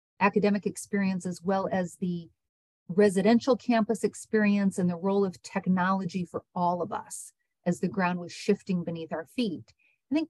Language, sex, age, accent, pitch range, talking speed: English, female, 40-59, American, 180-225 Hz, 165 wpm